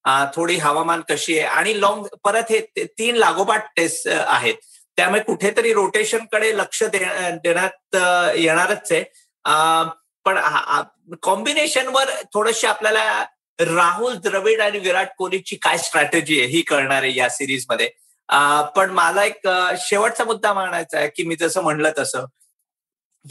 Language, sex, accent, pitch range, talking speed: Marathi, male, native, 160-220 Hz, 135 wpm